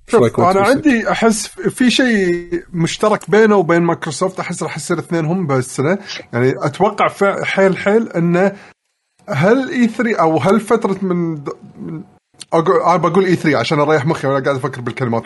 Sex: male